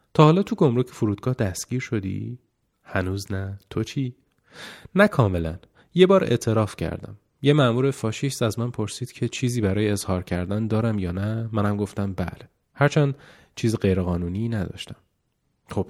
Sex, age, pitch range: male, 30-49, 95-125 Hz